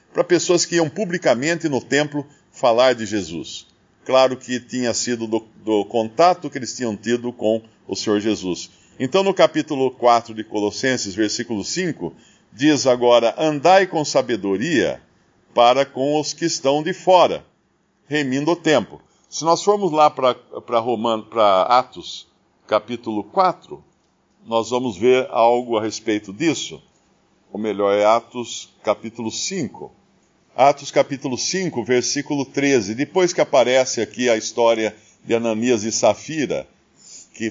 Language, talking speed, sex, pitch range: Portuguese, 135 wpm, male, 110-140 Hz